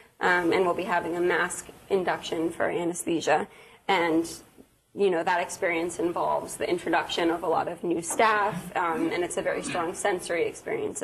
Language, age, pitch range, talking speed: English, 20-39, 175-210 Hz, 175 wpm